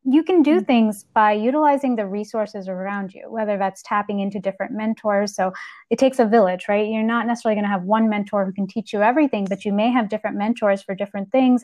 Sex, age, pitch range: female, 20-39, 200-235 Hz